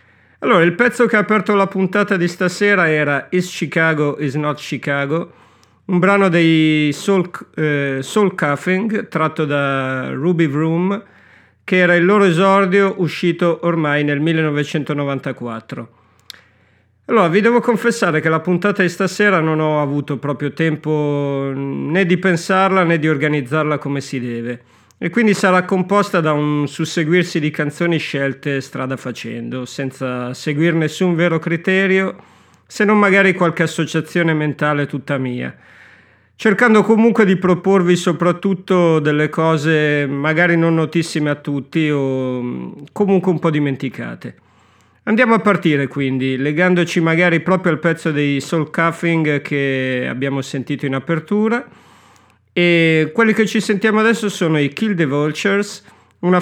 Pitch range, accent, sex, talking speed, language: 140-185 Hz, native, male, 135 wpm, Italian